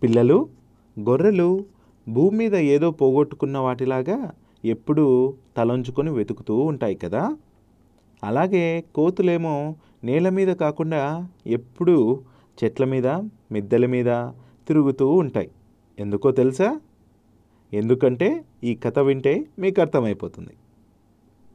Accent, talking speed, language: native, 90 wpm, Telugu